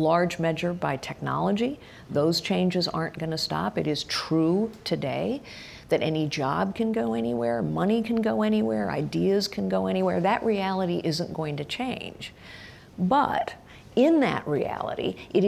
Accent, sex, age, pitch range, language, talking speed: American, female, 50-69, 150-215 Hz, English, 150 wpm